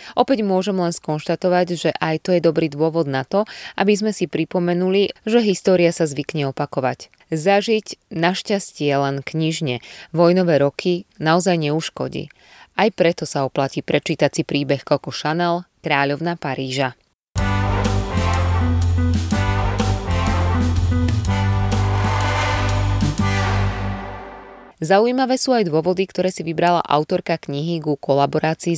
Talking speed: 105 wpm